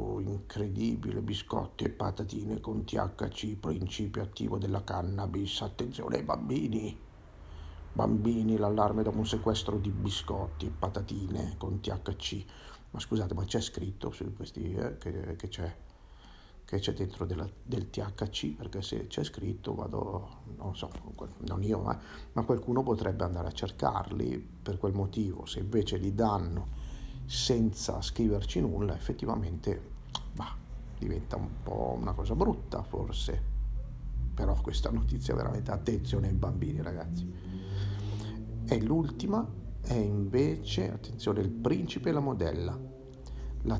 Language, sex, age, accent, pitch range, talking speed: Italian, male, 50-69, native, 90-110 Hz, 130 wpm